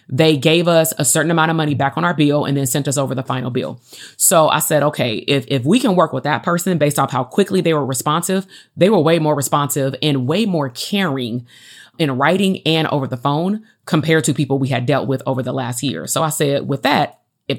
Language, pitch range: English, 135-160 Hz